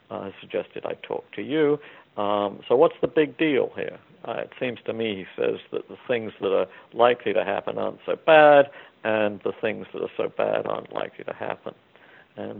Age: 60-79